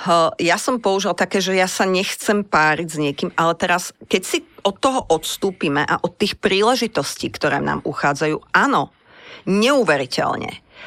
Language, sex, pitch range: English, female, 175-235 Hz